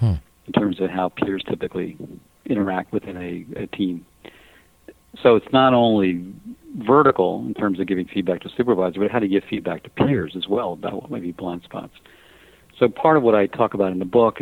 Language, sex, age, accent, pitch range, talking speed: English, male, 50-69, American, 95-110 Hz, 205 wpm